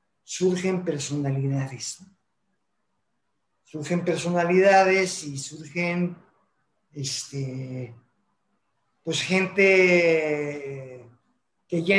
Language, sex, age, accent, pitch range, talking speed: Spanish, male, 50-69, Mexican, 150-190 Hz, 55 wpm